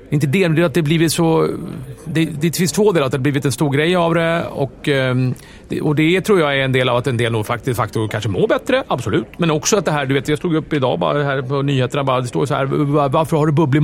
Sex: male